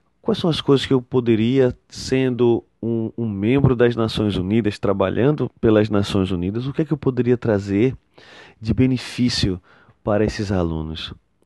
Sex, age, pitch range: male, 30-49, 105-140 Hz